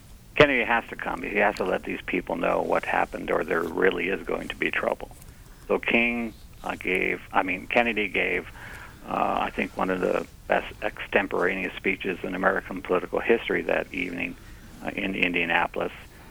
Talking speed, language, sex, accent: 170 wpm, English, male, American